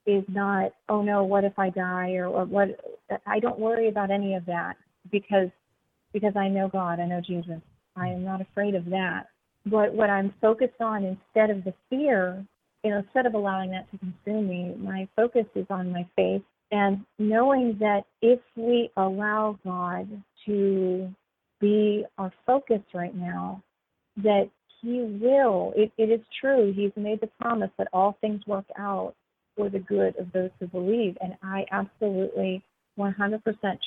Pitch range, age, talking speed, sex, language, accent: 190-215 Hz, 40-59, 170 wpm, female, English, American